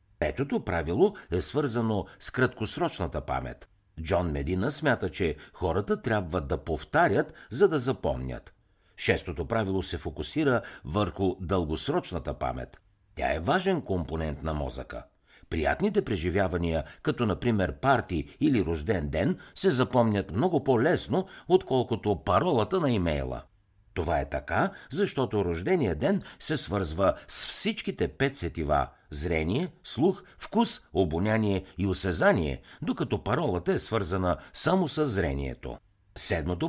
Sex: male